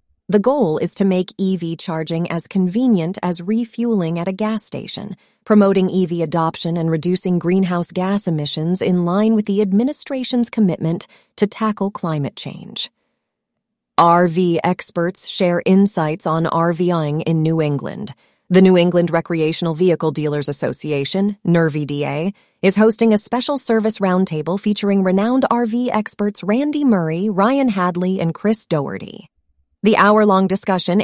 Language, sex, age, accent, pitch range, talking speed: English, female, 30-49, American, 175-220 Hz, 135 wpm